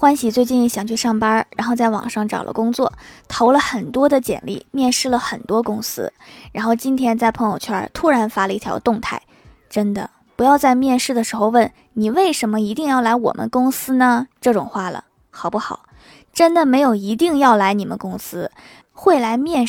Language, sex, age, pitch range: Chinese, female, 20-39, 215-265 Hz